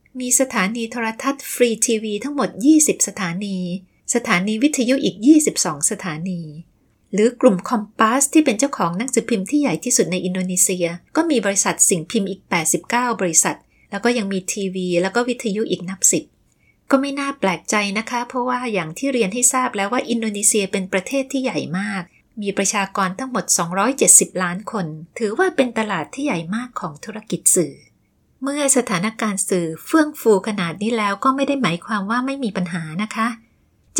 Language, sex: Thai, female